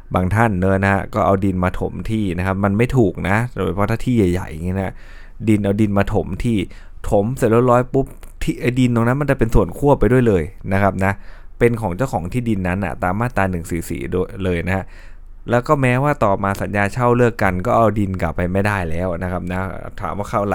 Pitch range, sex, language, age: 95-115 Hz, male, Thai, 20-39